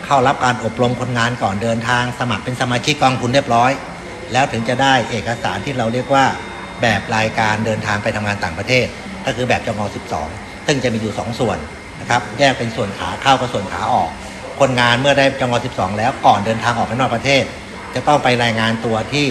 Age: 60-79